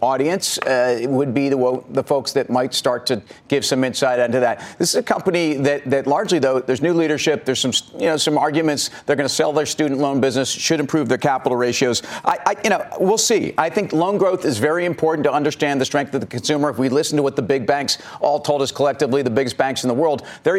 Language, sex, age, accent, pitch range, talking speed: English, male, 40-59, American, 135-160 Hz, 250 wpm